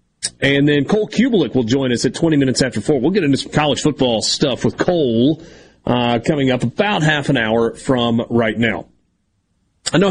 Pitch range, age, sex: 125-185 Hz, 40-59, male